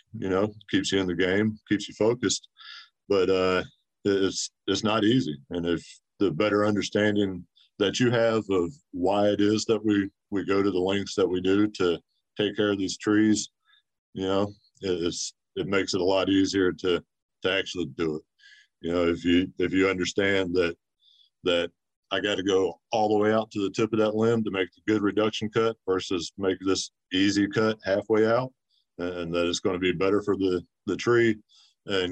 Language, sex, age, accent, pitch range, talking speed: English, male, 50-69, American, 95-110 Hz, 200 wpm